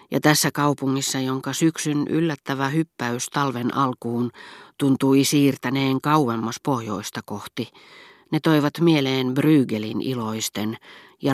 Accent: native